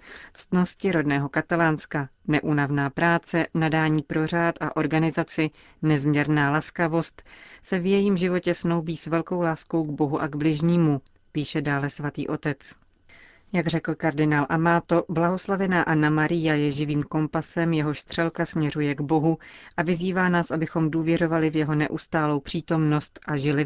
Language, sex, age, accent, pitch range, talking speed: Czech, female, 30-49, native, 150-170 Hz, 140 wpm